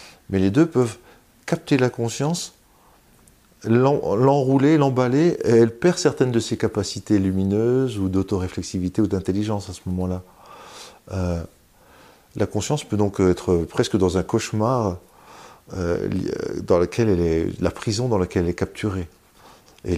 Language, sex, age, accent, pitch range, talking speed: French, male, 50-69, French, 95-130 Hz, 145 wpm